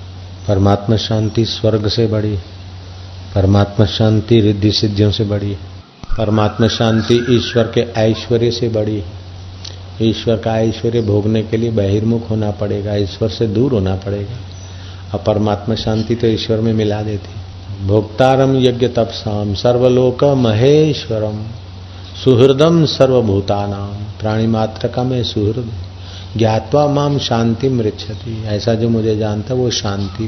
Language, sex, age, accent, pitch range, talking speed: Hindi, male, 50-69, native, 100-120 Hz, 125 wpm